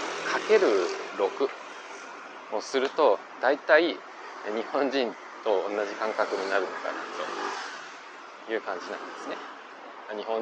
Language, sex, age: Japanese, male, 20-39